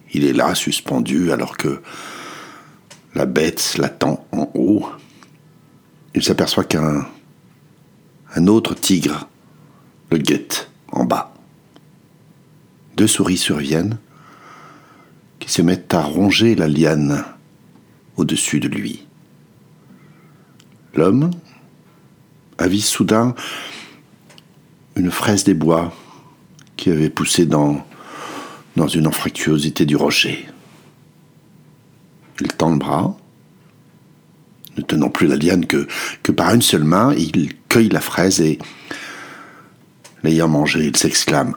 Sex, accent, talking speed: male, French, 105 wpm